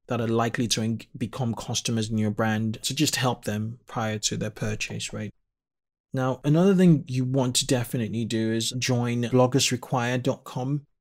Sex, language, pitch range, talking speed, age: male, English, 115-135 Hz, 165 wpm, 20-39